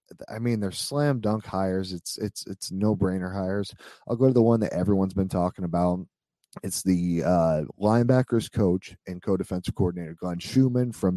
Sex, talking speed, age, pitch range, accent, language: male, 185 wpm, 30-49, 95-115 Hz, American, English